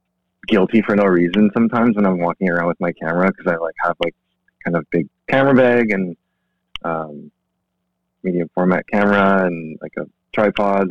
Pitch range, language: 80-95 Hz, English